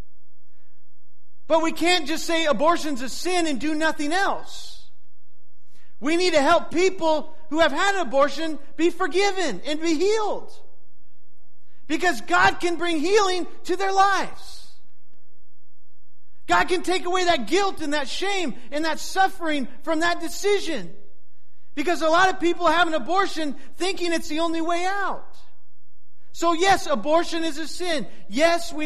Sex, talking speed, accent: male, 150 wpm, American